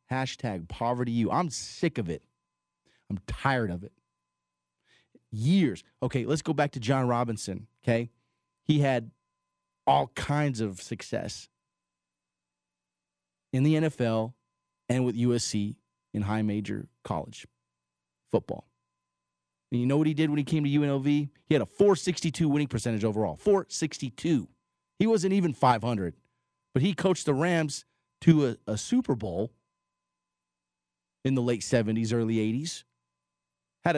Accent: American